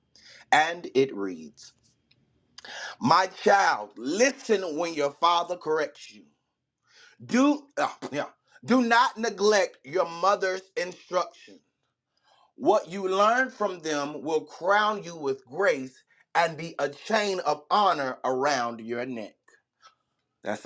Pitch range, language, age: 130-175 Hz, English, 30-49